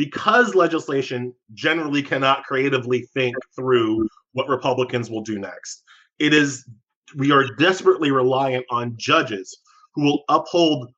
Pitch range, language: 135-190 Hz, English